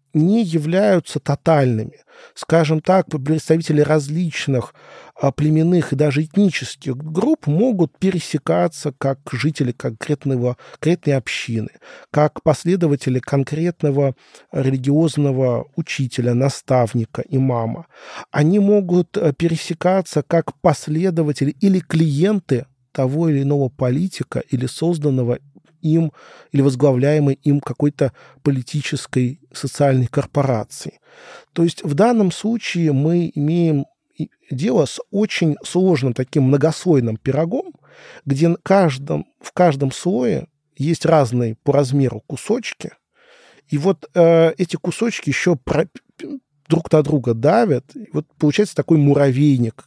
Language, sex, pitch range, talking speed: Russian, male, 135-170 Hz, 100 wpm